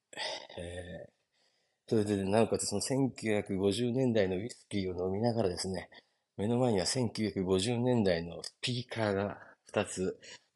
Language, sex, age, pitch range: Japanese, male, 30-49, 90-115 Hz